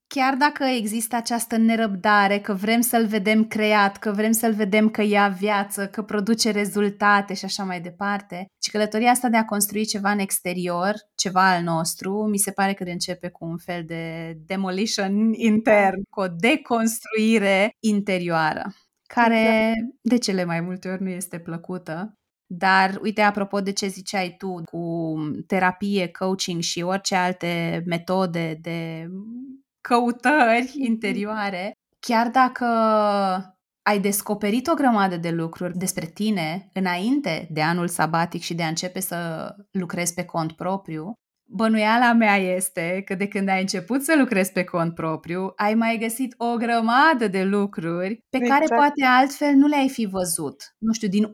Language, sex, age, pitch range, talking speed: Romanian, female, 20-39, 180-220 Hz, 155 wpm